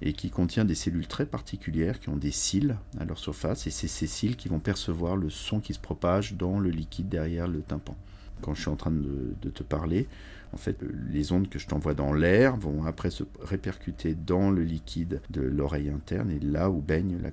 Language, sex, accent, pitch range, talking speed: French, male, French, 75-95 Hz, 225 wpm